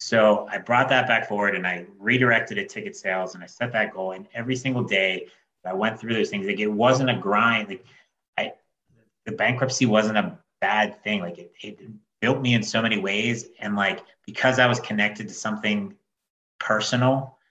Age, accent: 30-49, American